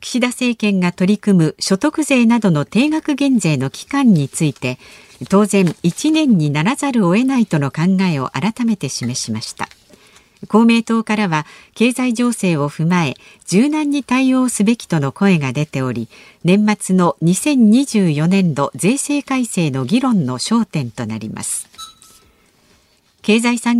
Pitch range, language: 160-245 Hz, Japanese